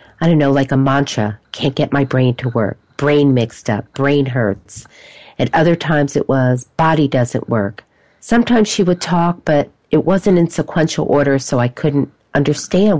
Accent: American